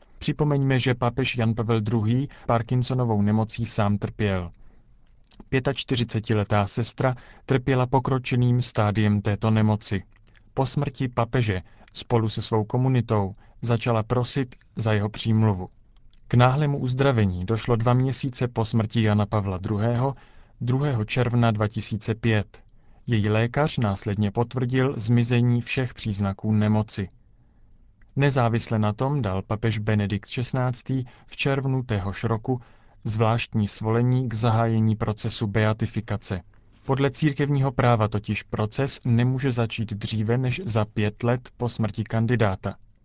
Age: 40-59